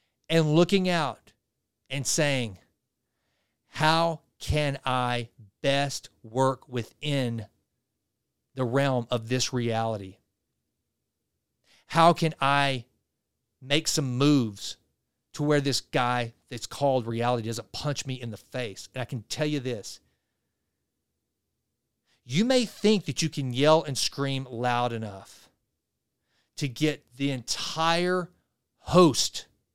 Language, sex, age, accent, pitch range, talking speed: English, male, 40-59, American, 125-170 Hz, 115 wpm